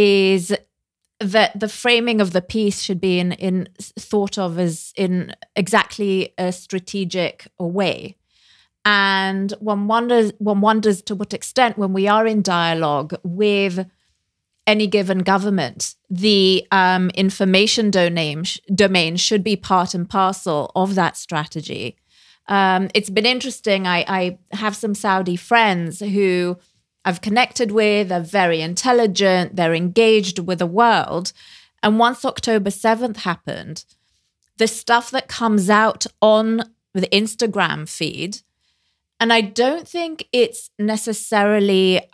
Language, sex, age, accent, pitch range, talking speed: English, female, 30-49, British, 180-215 Hz, 130 wpm